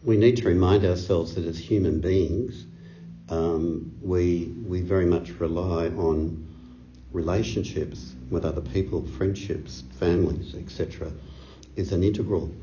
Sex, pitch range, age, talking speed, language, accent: male, 80-95 Hz, 60-79, 125 wpm, English, Australian